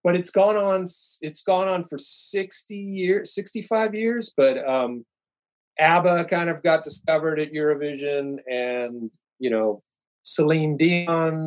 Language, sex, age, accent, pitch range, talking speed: English, male, 30-49, American, 130-190 Hz, 135 wpm